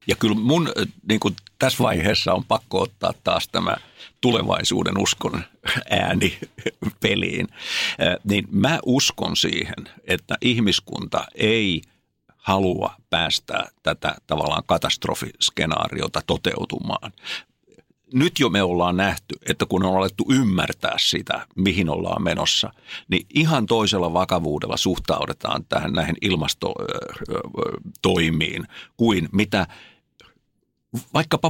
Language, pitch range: Finnish, 85-115 Hz